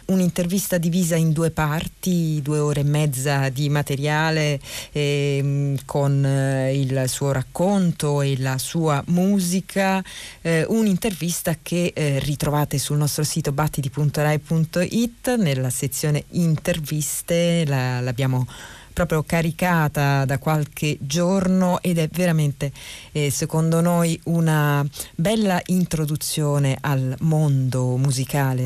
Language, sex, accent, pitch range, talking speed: Italian, female, native, 135-165 Hz, 110 wpm